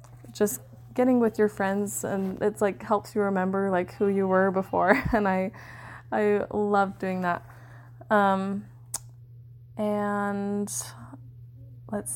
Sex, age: female, 20-39